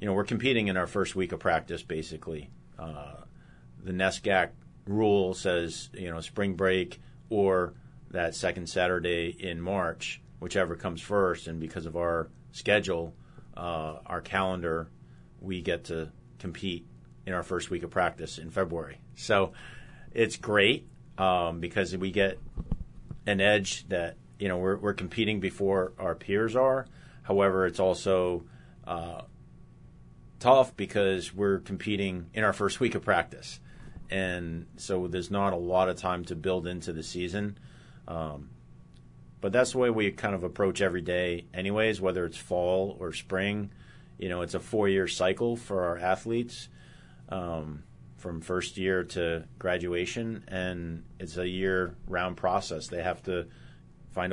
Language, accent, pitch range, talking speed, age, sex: English, American, 85-100 Hz, 150 wpm, 40-59, male